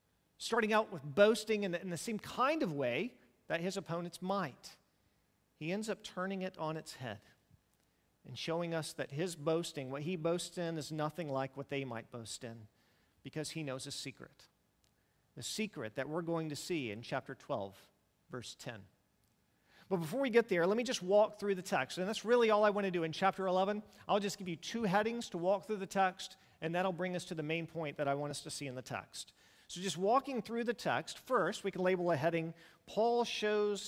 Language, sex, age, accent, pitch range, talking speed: English, male, 40-59, American, 155-205 Hz, 220 wpm